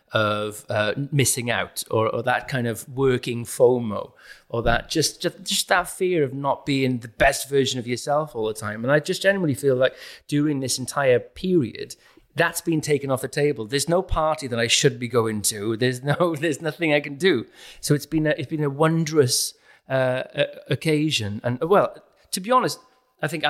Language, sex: English, male